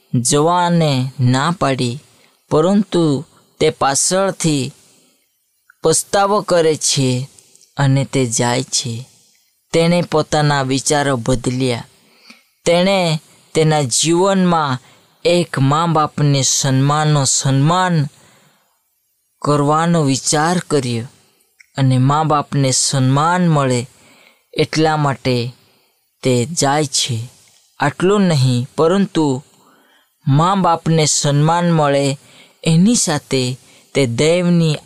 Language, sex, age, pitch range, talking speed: Hindi, female, 20-39, 130-160 Hz, 60 wpm